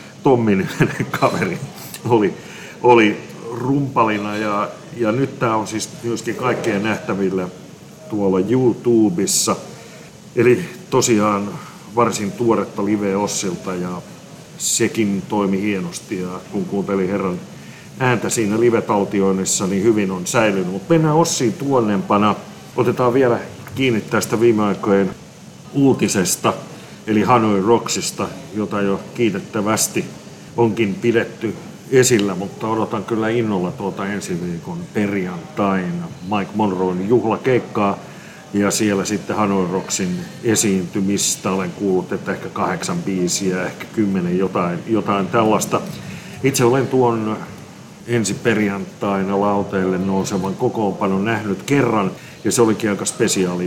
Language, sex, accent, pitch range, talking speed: Finnish, male, native, 95-120 Hz, 110 wpm